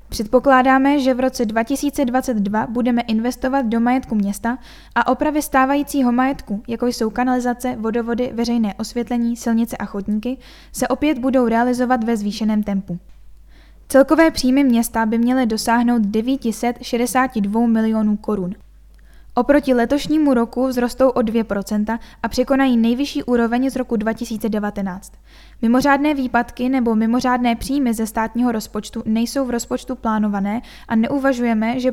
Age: 10-29